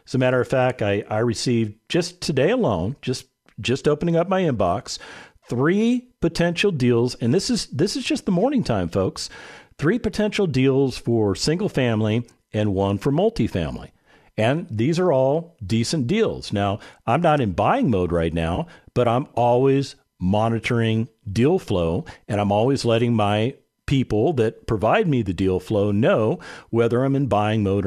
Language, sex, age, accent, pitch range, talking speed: English, male, 50-69, American, 100-135 Hz, 165 wpm